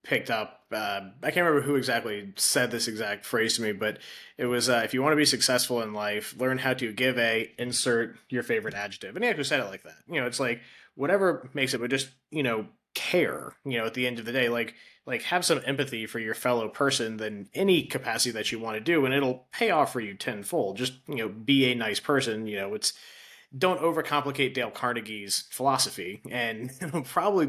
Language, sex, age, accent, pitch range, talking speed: English, male, 20-39, American, 110-130 Hz, 225 wpm